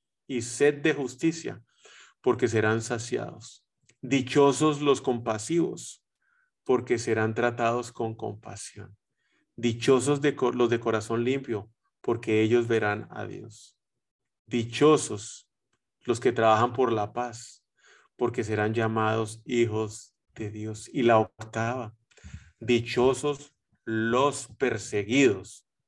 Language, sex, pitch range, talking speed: Spanish, male, 110-130 Hz, 100 wpm